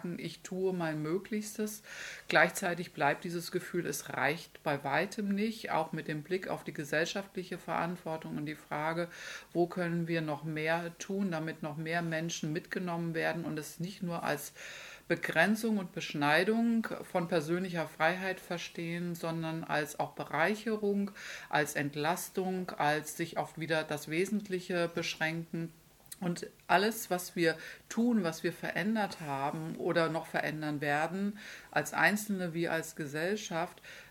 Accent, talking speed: German, 140 wpm